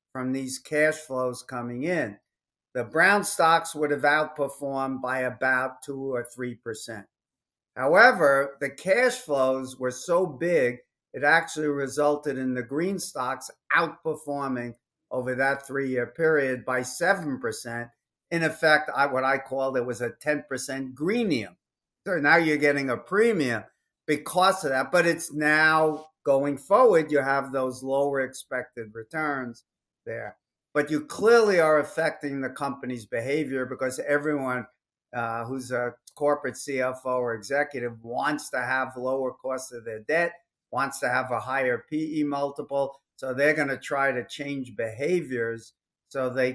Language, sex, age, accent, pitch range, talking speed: English, male, 50-69, American, 125-150 Hz, 145 wpm